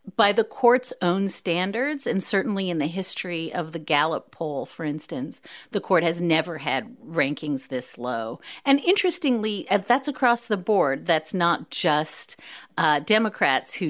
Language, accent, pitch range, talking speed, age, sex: English, American, 155-215 Hz, 155 wpm, 40-59, female